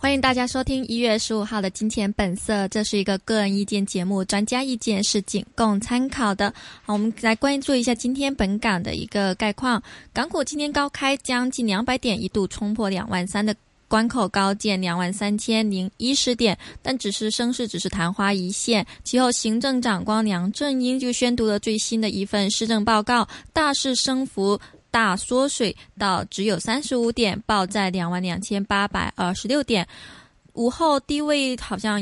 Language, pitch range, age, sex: Chinese, 195-245 Hz, 20-39, female